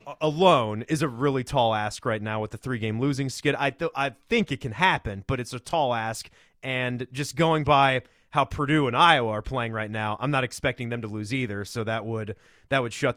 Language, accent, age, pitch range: English, American, 30-49, 115-150 Hz